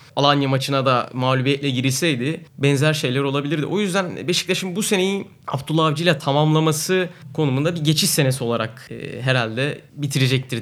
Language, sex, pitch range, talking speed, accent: Turkish, male, 130-170 Hz, 140 wpm, native